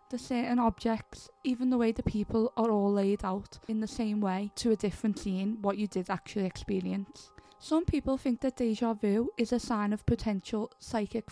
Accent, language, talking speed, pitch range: British, English, 195 wpm, 200-235 Hz